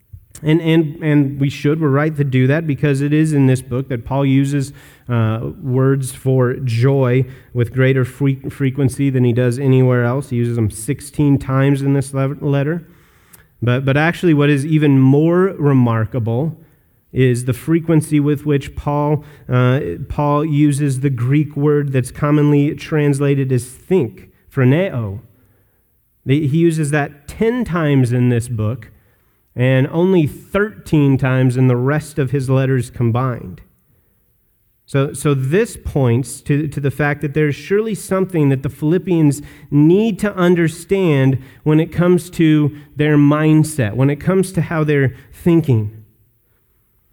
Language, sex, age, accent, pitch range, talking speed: English, male, 30-49, American, 130-155 Hz, 150 wpm